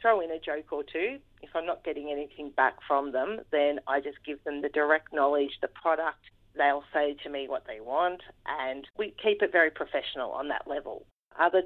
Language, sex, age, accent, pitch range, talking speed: English, female, 40-59, Australian, 145-195 Hz, 210 wpm